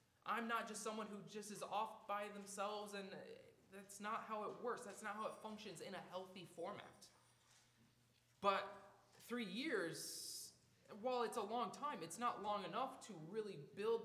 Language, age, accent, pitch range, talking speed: English, 20-39, American, 180-230 Hz, 170 wpm